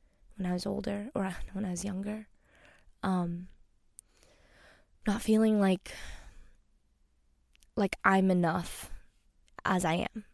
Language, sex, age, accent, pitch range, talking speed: English, female, 20-39, American, 175-220 Hz, 105 wpm